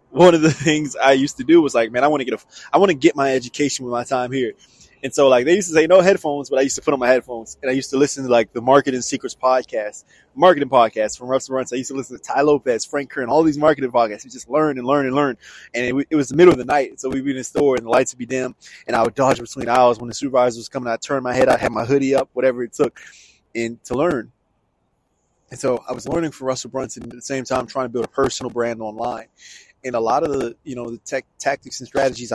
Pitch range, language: 120-140 Hz, English